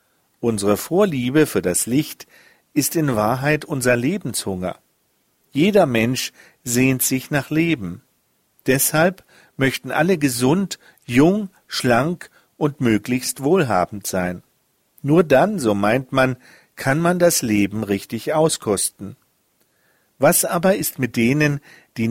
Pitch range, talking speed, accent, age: 115-155 Hz, 115 wpm, German, 50-69